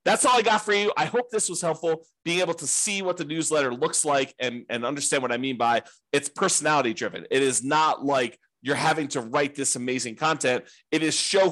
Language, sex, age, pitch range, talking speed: English, male, 30-49, 125-160 Hz, 230 wpm